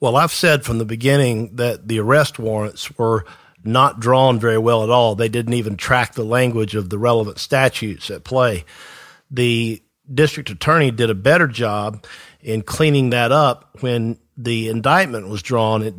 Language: English